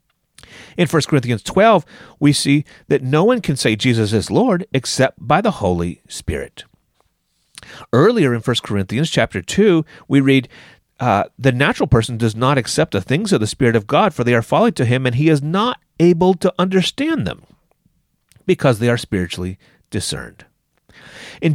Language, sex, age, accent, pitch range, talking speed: English, male, 40-59, American, 110-160 Hz, 170 wpm